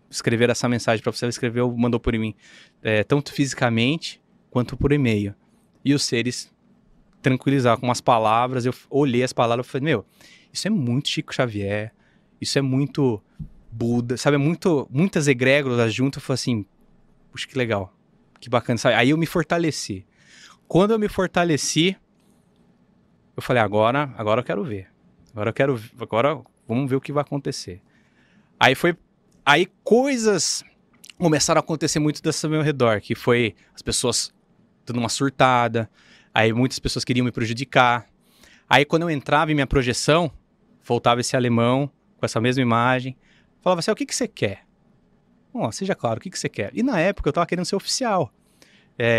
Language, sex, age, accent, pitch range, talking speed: English, male, 20-39, Brazilian, 120-165 Hz, 175 wpm